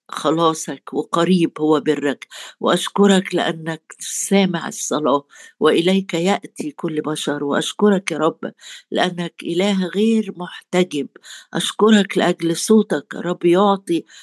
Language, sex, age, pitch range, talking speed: Arabic, female, 50-69, 170-205 Hz, 100 wpm